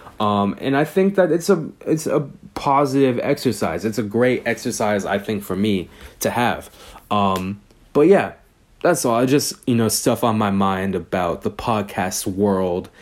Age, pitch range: 20-39, 100-135 Hz